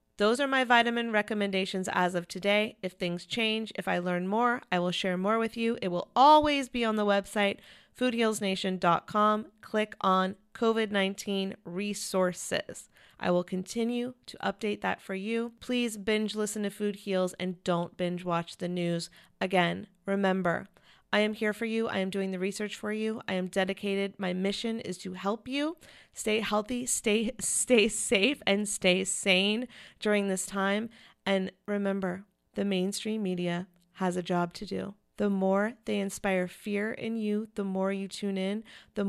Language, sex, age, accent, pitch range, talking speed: English, female, 30-49, American, 190-220 Hz, 170 wpm